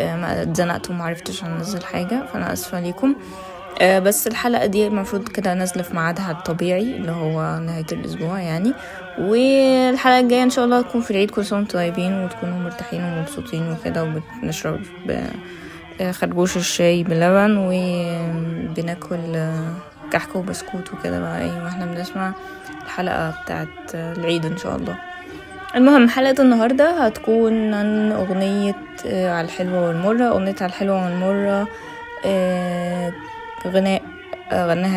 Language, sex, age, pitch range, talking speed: Arabic, female, 20-39, 175-215 Hz, 120 wpm